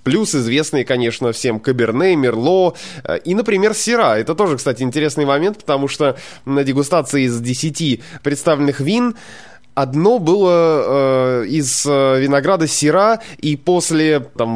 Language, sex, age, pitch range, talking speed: Russian, male, 20-39, 125-170 Hz, 130 wpm